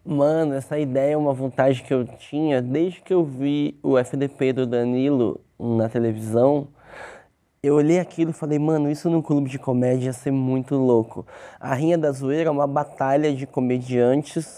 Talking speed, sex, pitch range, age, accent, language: 175 wpm, male, 135-180 Hz, 20-39, Brazilian, Portuguese